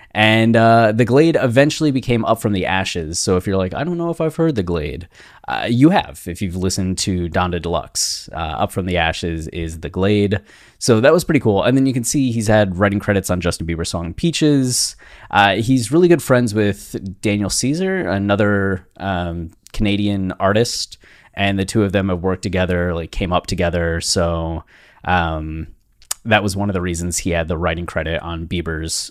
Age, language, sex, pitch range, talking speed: 20-39, English, male, 90-115 Hz, 200 wpm